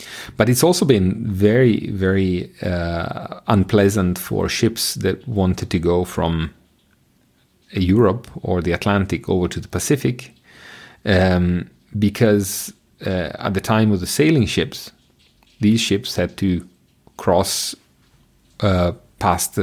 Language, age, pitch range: English, 40-59, 90-110 Hz